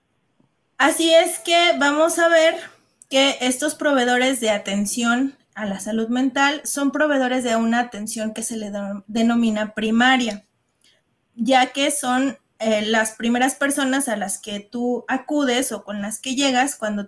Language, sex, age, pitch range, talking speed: Spanish, female, 20-39, 215-270 Hz, 150 wpm